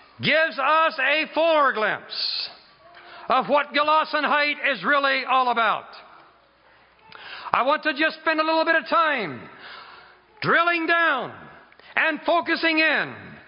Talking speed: 125 wpm